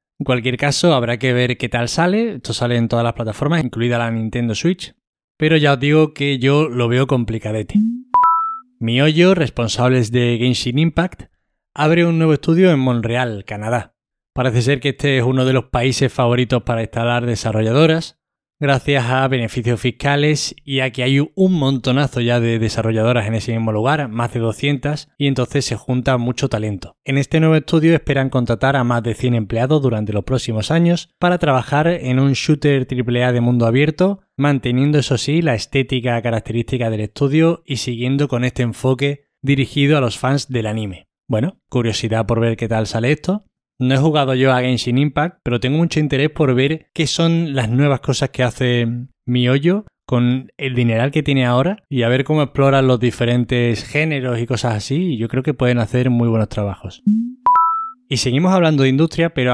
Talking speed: 185 wpm